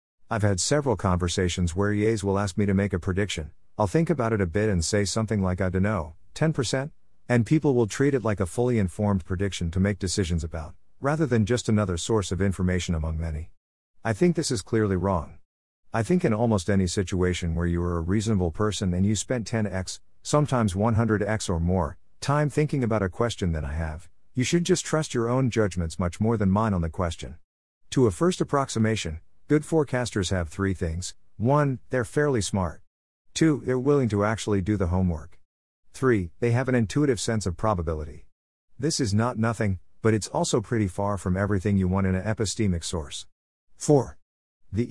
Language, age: English, 50-69